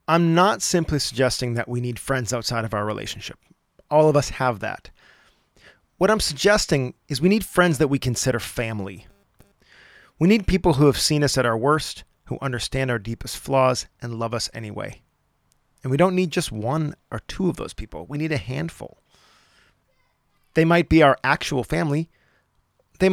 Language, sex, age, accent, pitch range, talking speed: English, male, 30-49, American, 110-150 Hz, 180 wpm